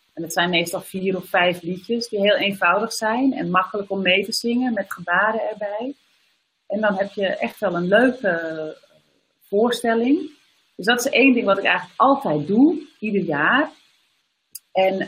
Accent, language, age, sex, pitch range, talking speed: Dutch, Dutch, 40-59, female, 185-245 Hz, 170 wpm